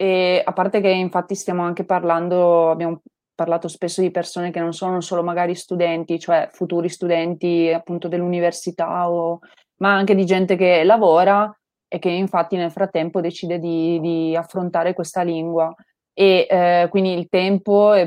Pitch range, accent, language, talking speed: 175-205 Hz, native, Italian, 160 wpm